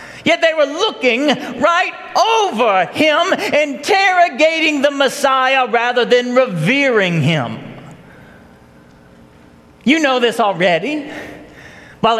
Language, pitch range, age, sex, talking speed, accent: English, 205-285 Hz, 40-59, male, 95 wpm, American